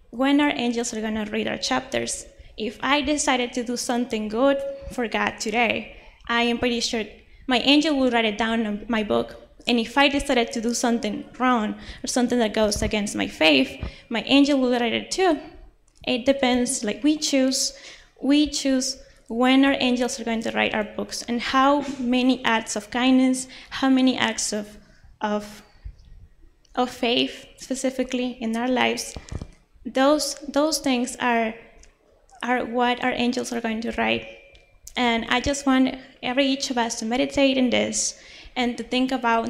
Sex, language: female, English